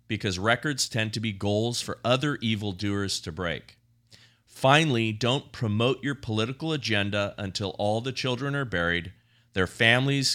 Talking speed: 145 wpm